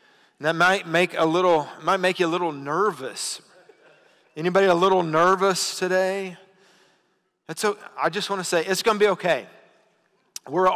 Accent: American